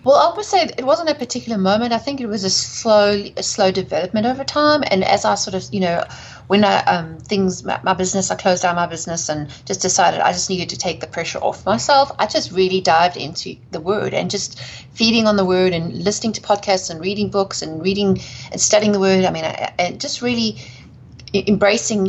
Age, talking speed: 30-49, 225 wpm